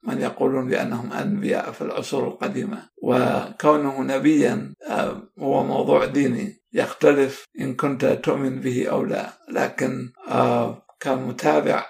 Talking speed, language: 105 wpm, Arabic